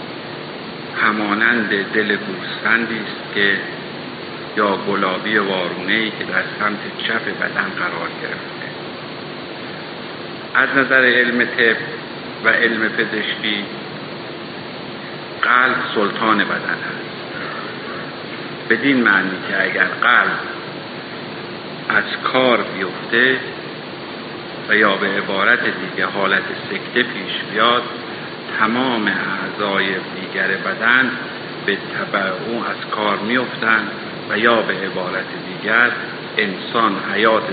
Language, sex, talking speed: Persian, male, 95 wpm